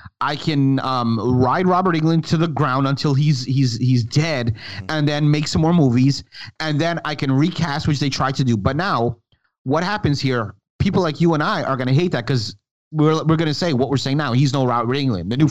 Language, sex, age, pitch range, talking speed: English, male, 30-49, 125-165 Hz, 230 wpm